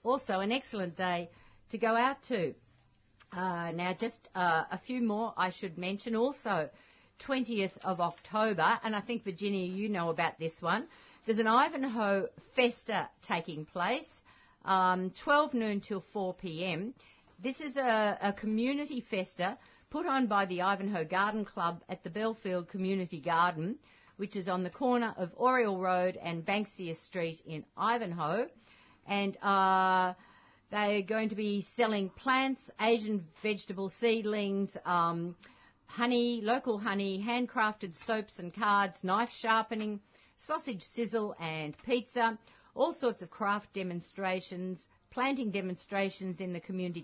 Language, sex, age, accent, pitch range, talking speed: English, female, 50-69, Australian, 180-230 Hz, 140 wpm